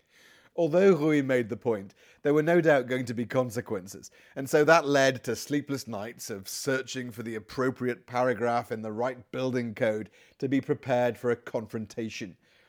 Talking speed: 175 wpm